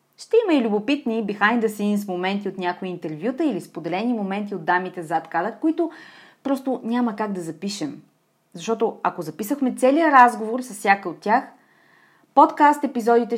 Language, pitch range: Bulgarian, 190-265 Hz